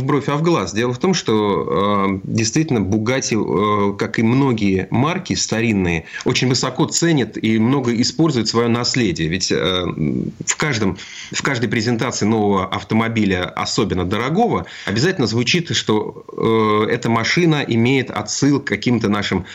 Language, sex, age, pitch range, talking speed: Russian, male, 30-49, 100-125 Hz, 145 wpm